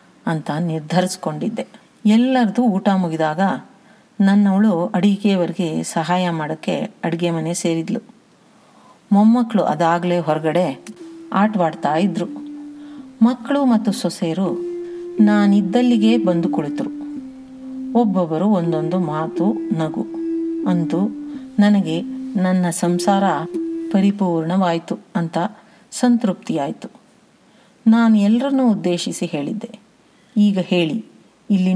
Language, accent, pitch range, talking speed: Kannada, native, 180-230 Hz, 75 wpm